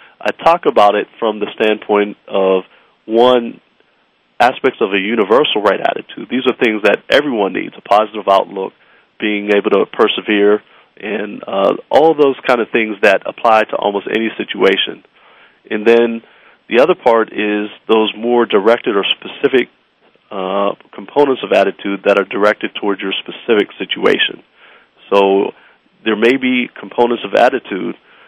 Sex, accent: male, American